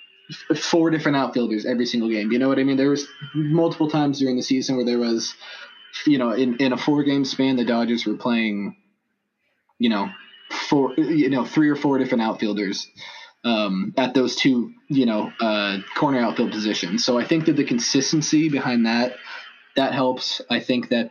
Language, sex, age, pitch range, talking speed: English, male, 20-39, 115-145 Hz, 190 wpm